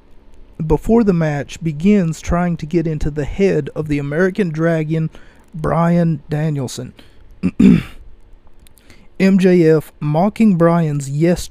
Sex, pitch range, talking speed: male, 140-175 Hz, 105 wpm